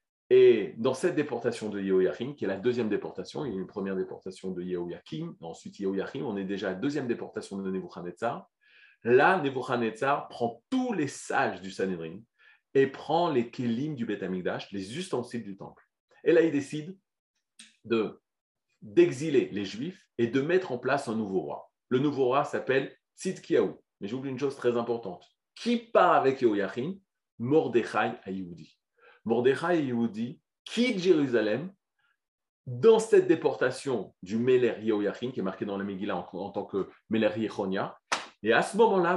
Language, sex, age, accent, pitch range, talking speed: French, male, 30-49, French, 115-185 Hz, 165 wpm